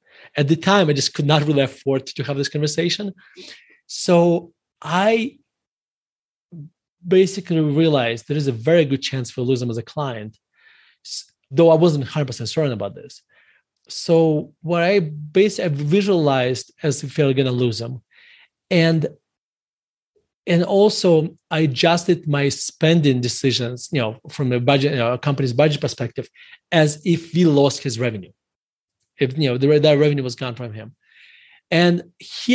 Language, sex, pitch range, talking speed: English, male, 135-180 Hz, 155 wpm